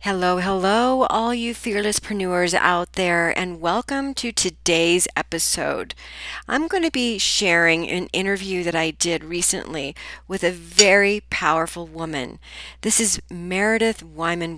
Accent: American